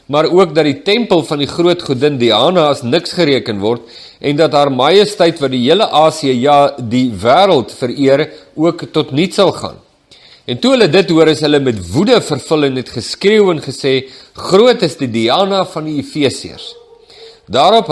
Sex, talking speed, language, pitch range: male, 180 wpm, English, 125-175 Hz